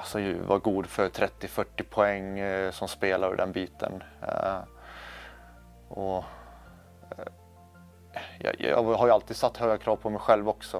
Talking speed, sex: 150 wpm, male